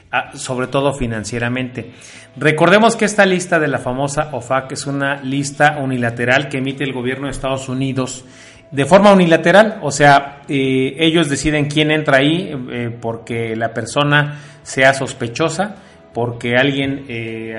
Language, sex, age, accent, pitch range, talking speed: Spanish, male, 40-59, Mexican, 125-155 Hz, 145 wpm